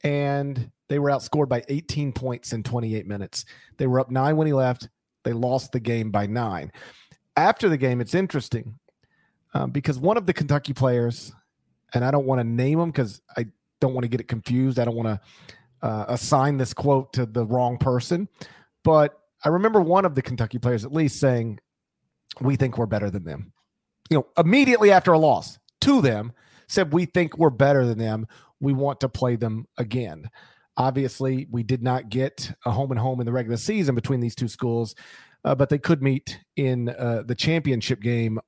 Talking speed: 200 wpm